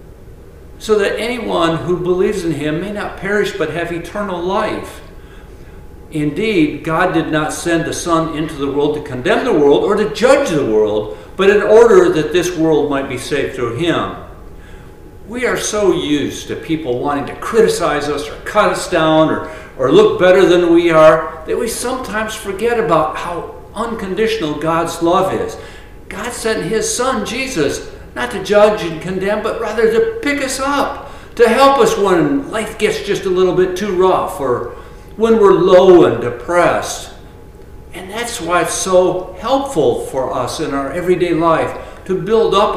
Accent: American